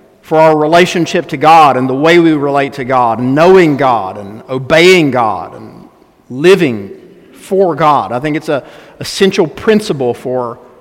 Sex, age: male, 50-69